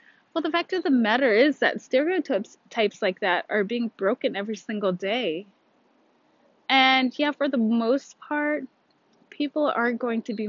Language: English